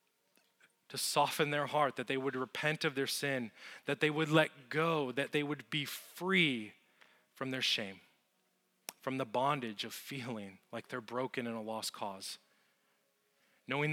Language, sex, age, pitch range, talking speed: English, male, 30-49, 120-155 Hz, 160 wpm